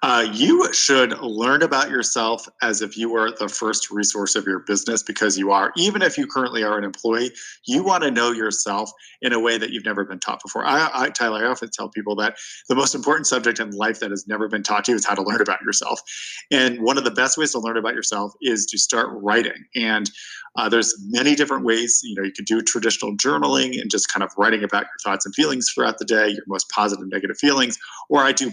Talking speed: 245 wpm